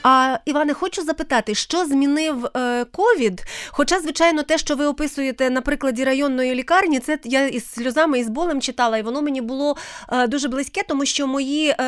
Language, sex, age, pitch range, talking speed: Ukrainian, female, 30-49, 245-310 Hz, 175 wpm